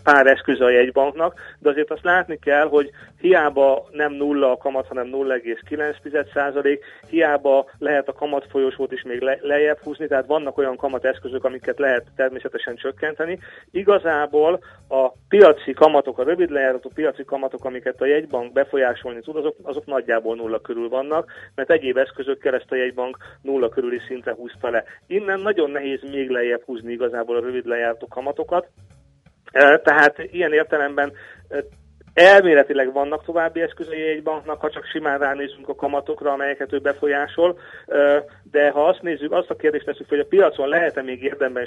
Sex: male